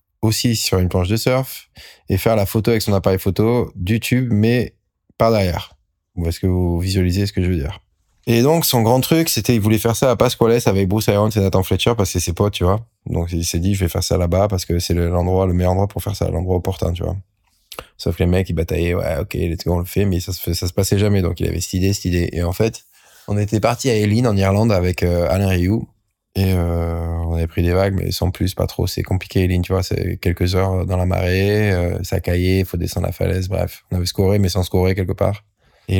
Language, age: French, 20-39